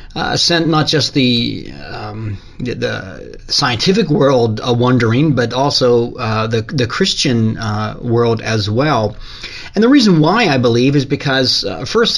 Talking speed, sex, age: 160 wpm, male, 40-59